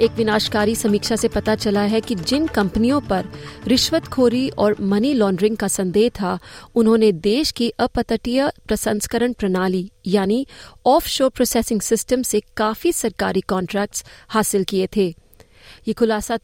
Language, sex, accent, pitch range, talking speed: Hindi, female, native, 200-240 Hz, 135 wpm